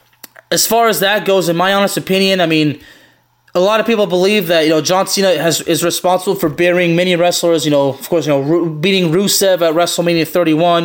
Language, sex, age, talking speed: English, male, 20-39, 220 wpm